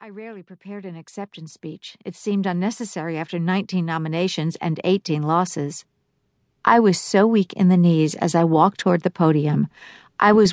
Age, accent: 50-69, American